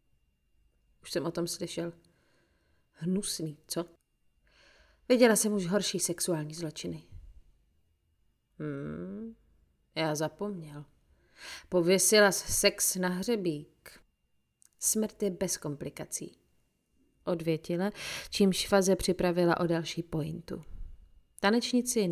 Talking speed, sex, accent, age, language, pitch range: 85 wpm, female, native, 30-49, Czech, 145-205 Hz